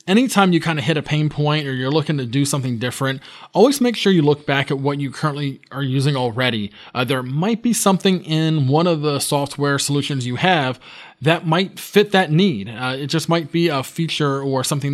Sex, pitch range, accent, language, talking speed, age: male, 135-165 Hz, American, English, 220 wpm, 20-39